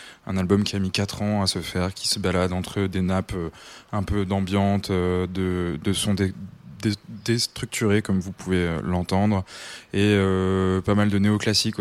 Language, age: French, 20-39